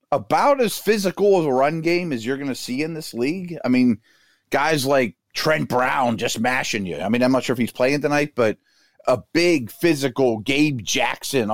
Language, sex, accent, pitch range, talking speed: English, male, American, 125-165 Hz, 205 wpm